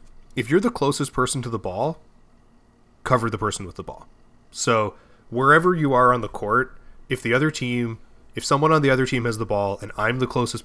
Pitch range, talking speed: 110-130 Hz, 215 wpm